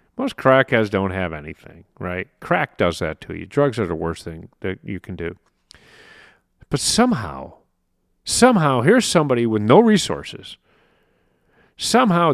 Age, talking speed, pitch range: 40-59, 140 wpm, 95-145 Hz